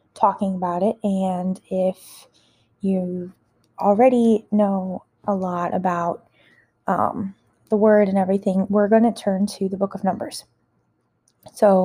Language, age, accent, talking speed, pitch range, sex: English, 20-39, American, 130 wpm, 185-205 Hz, female